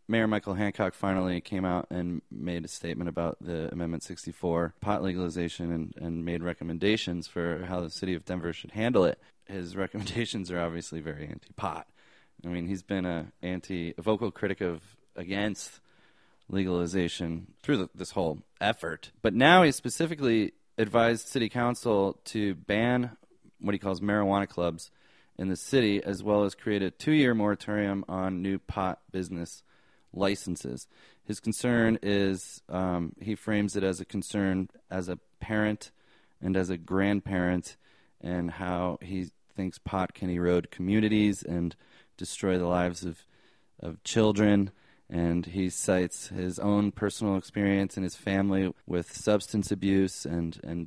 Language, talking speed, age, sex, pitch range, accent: English, 150 wpm, 20-39, male, 90-105 Hz, American